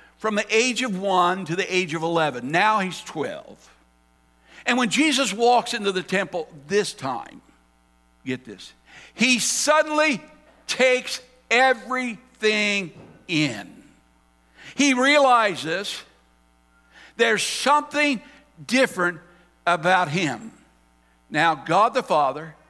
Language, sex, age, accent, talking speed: English, male, 60-79, American, 105 wpm